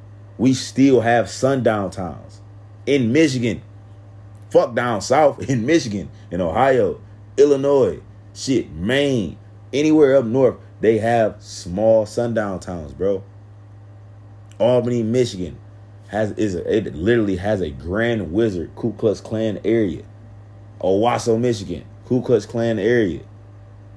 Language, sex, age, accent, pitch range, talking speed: English, male, 30-49, American, 100-110 Hz, 120 wpm